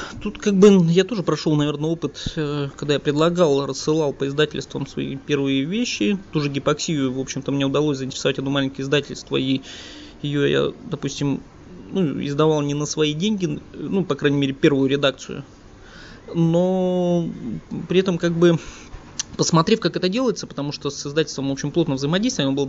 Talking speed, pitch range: 165 wpm, 140-175 Hz